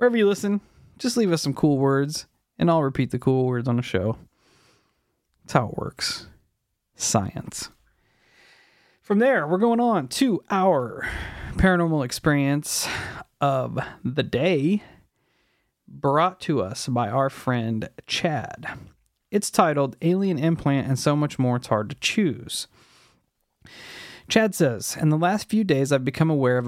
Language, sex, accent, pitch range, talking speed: English, male, American, 125-160 Hz, 145 wpm